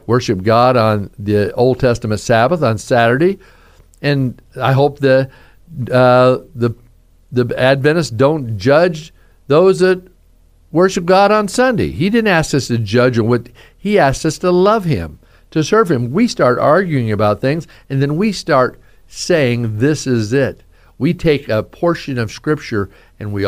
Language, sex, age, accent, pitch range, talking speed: English, male, 50-69, American, 115-155 Hz, 160 wpm